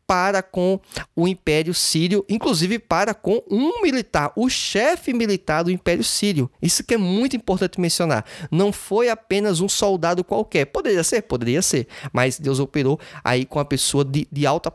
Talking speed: 170 wpm